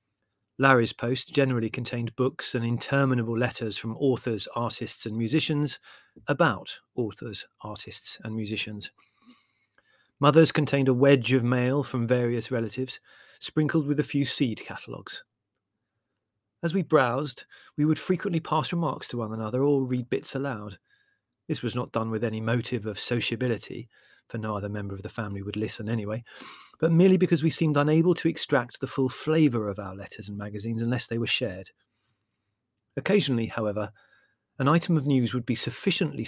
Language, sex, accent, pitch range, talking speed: English, male, British, 110-145 Hz, 160 wpm